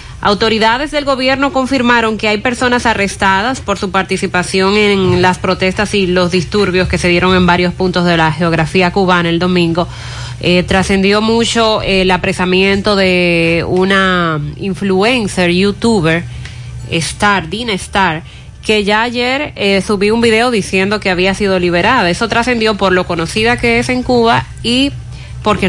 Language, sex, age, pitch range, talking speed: Spanish, female, 20-39, 175-220 Hz, 150 wpm